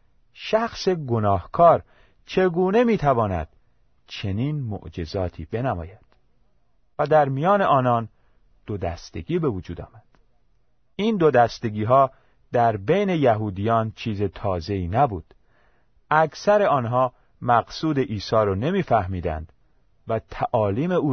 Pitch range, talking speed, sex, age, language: 95-145 Hz, 100 wpm, male, 40-59, Persian